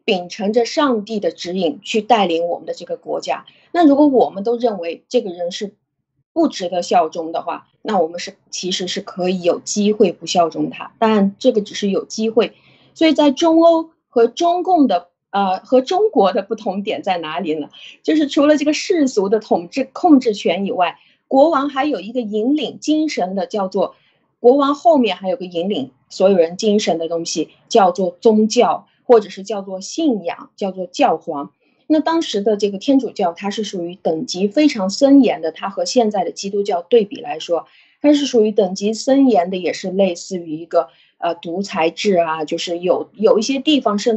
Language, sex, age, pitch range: Chinese, female, 20-39, 180-265 Hz